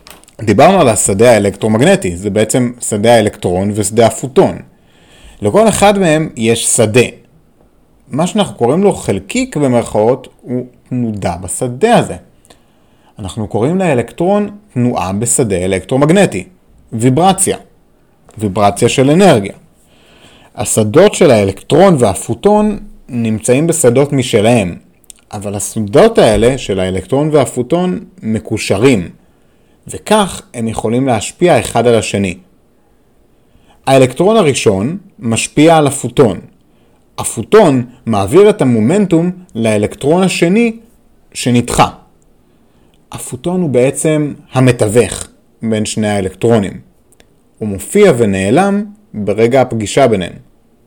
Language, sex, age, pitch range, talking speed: Hebrew, male, 30-49, 110-170 Hz, 95 wpm